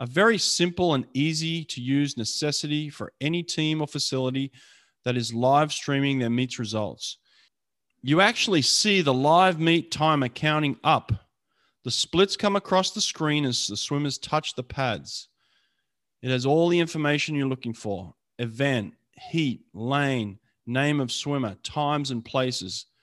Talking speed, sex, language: 150 wpm, male, English